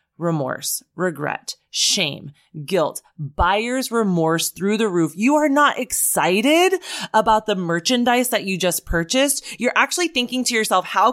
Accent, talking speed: American, 140 wpm